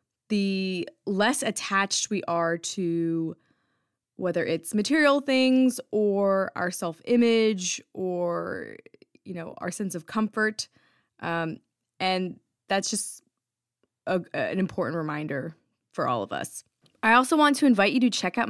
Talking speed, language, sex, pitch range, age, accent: 135 wpm, English, female, 180-230 Hz, 20-39, American